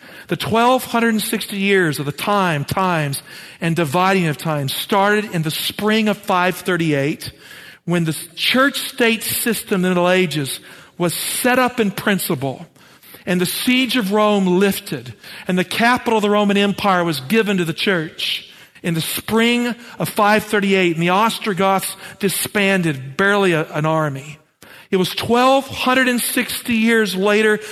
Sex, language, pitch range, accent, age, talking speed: male, English, 170-210 Hz, American, 50-69, 145 wpm